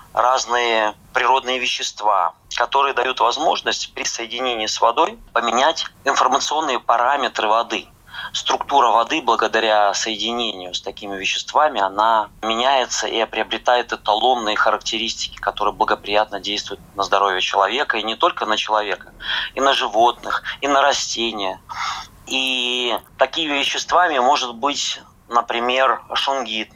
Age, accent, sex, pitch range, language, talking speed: 30-49, native, male, 100-120 Hz, Russian, 115 wpm